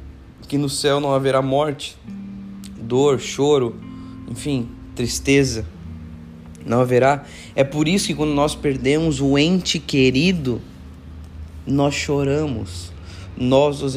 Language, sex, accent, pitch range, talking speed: Portuguese, male, Brazilian, 100-140 Hz, 110 wpm